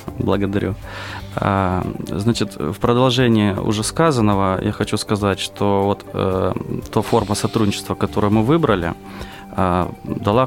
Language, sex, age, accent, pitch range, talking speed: Russian, male, 20-39, native, 90-105 Hz, 115 wpm